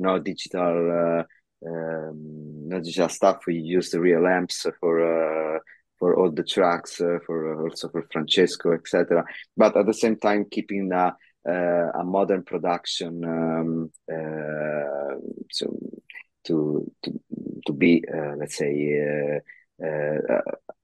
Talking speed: 135 wpm